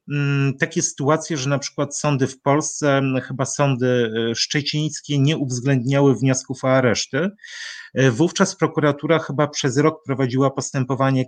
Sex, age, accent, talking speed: male, 30-49, native, 120 wpm